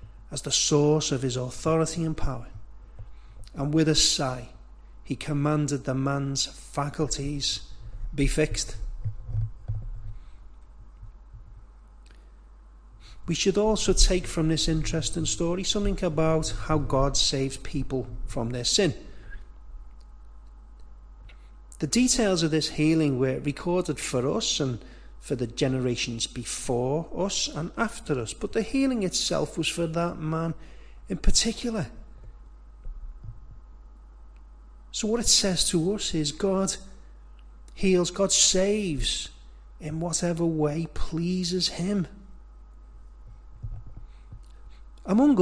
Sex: male